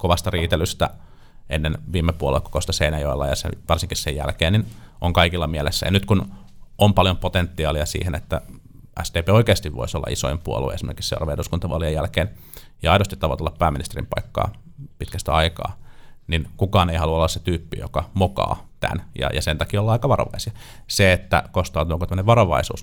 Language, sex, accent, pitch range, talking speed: Finnish, male, native, 85-100 Hz, 165 wpm